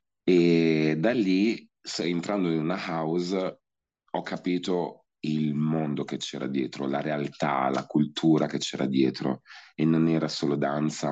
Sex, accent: male, native